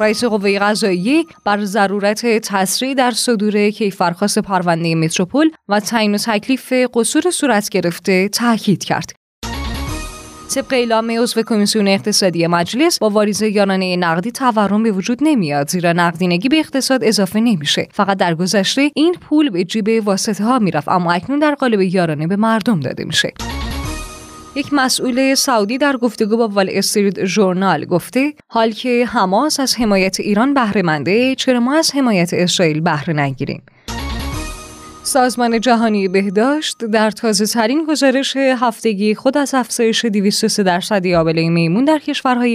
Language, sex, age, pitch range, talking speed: Persian, female, 20-39, 185-250 Hz, 140 wpm